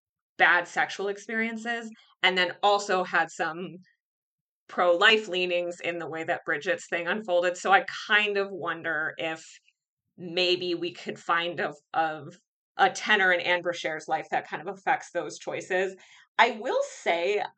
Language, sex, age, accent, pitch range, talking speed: English, female, 20-39, American, 175-210 Hz, 150 wpm